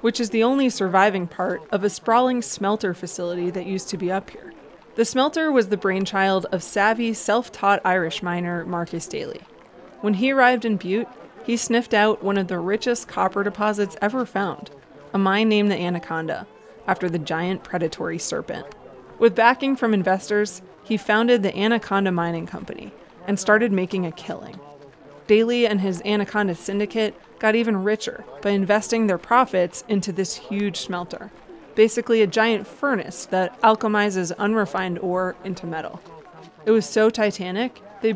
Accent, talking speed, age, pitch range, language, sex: American, 160 wpm, 20-39, 185-220 Hz, English, female